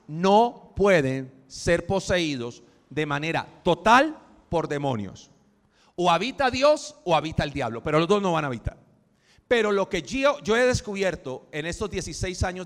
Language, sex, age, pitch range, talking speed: Spanish, male, 40-59, 140-205 Hz, 160 wpm